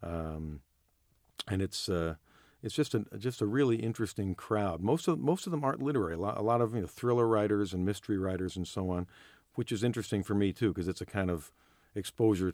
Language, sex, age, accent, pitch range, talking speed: English, male, 50-69, American, 90-110 Hz, 220 wpm